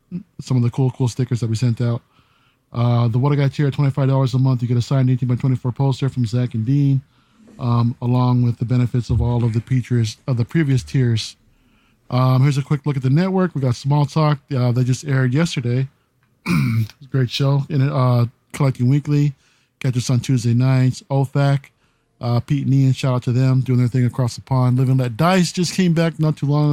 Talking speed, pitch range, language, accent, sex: 215 wpm, 125-140 Hz, English, American, male